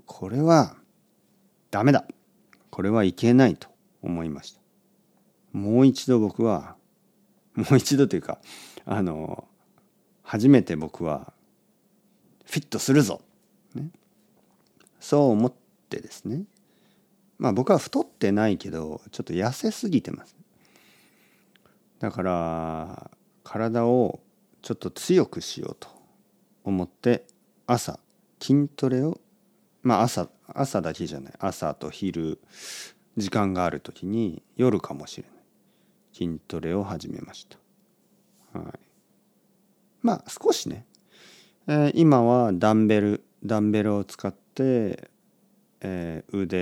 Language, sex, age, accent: Japanese, male, 50-69, native